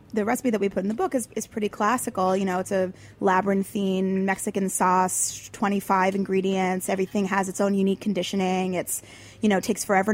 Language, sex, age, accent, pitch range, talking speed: English, female, 20-39, American, 185-210 Hz, 195 wpm